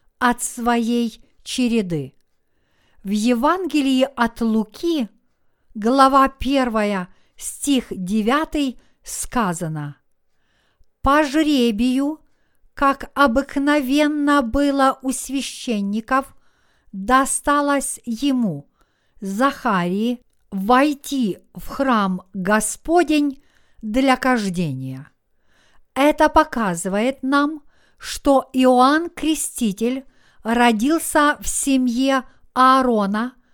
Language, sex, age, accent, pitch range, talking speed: Russian, female, 50-69, native, 215-275 Hz, 70 wpm